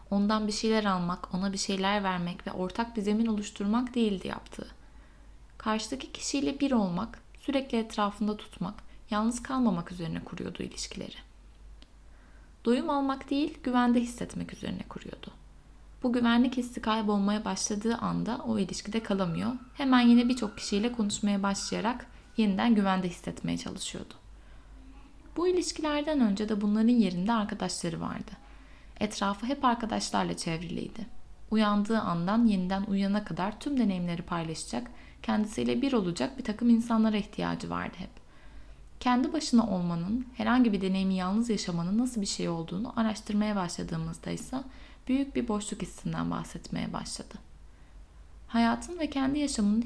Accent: native